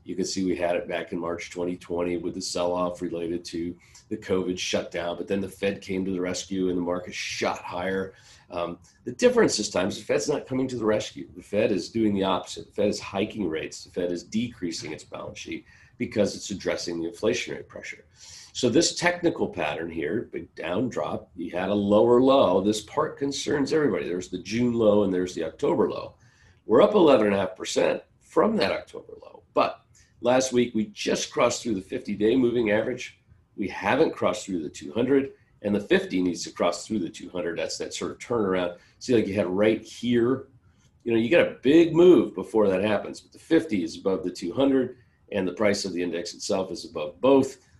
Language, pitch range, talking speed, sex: English, 90-120 Hz, 205 wpm, male